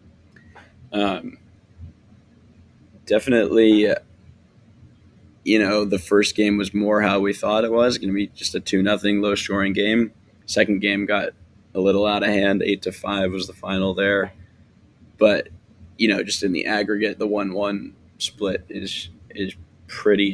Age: 20-39